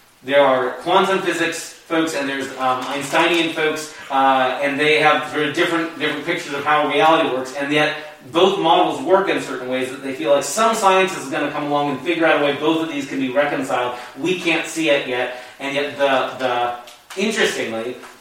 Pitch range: 135-170 Hz